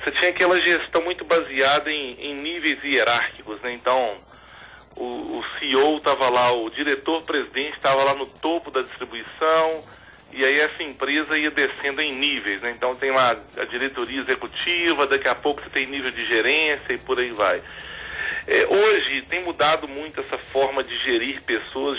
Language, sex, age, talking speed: Portuguese, male, 40-59, 165 wpm